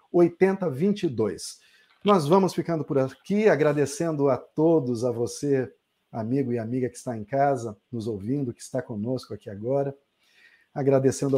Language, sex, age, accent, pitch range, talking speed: Portuguese, male, 50-69, Brazilian, 130-165 Hz, 135 wpm